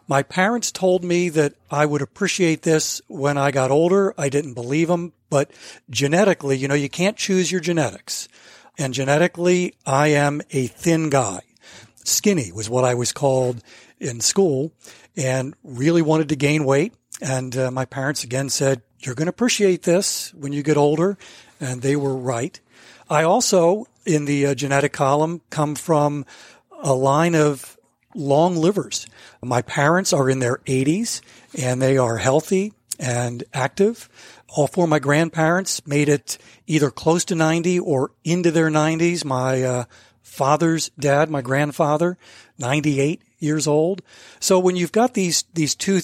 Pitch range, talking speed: 135-175 Hz, 160 wpm